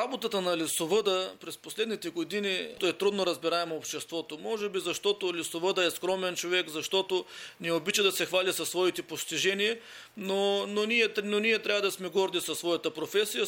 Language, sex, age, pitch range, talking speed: Bulgarian, male, 40-59, 160-210 Hz, 175 wpm